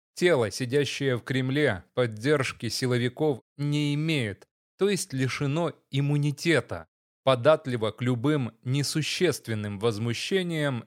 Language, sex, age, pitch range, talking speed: Russian, male, 30-49, 120-150 Hz, 95 wpm